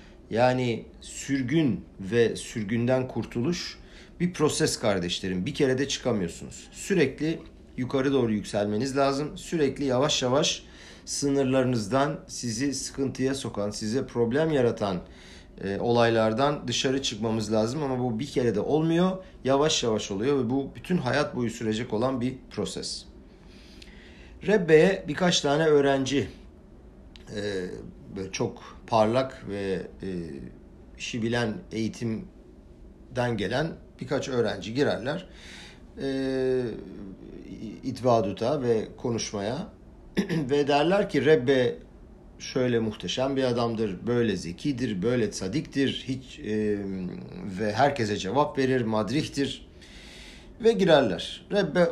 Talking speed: 105 wpm